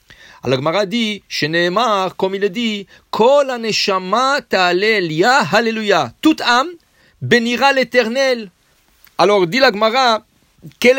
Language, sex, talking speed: English, male, 80 wpm